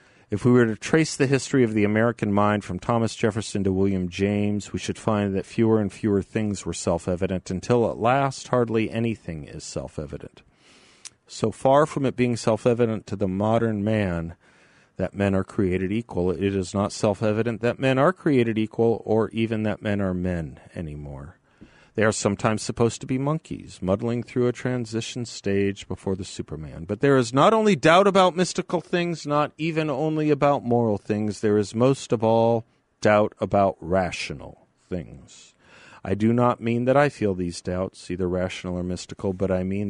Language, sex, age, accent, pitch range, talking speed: English, male, 40-59, American, 95-120 Hz, 180 wpm